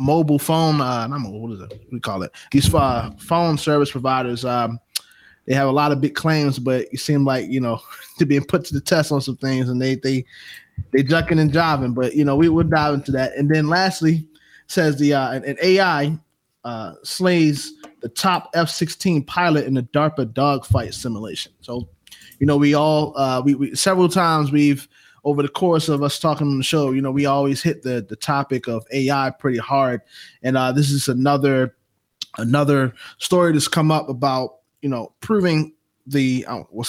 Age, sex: 20-39, male